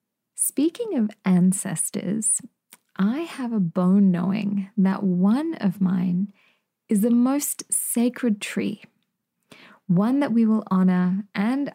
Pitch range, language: 185-220 Hz, English